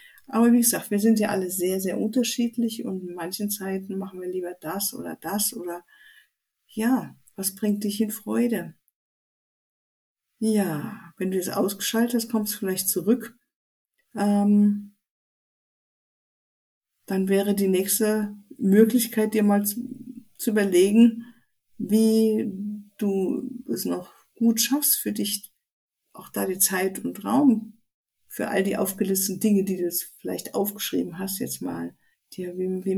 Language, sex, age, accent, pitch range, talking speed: German, female, 50-69, German, 190-225 Hz, 140 wpm